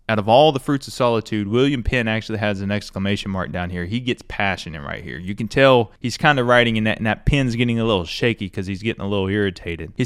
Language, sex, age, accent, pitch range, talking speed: English, male, 20-39, American, 105-135 Hz, 255 wpm